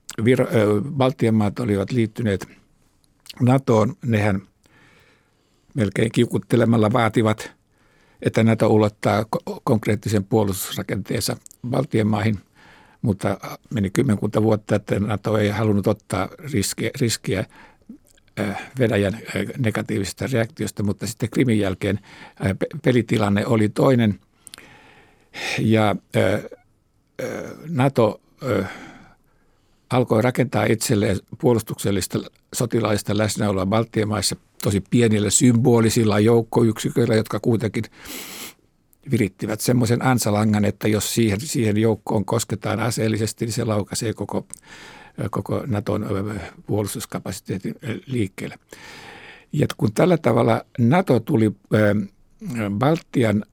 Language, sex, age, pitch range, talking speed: Finnish, male, 60-79, 105-120 Hz, 85 wpm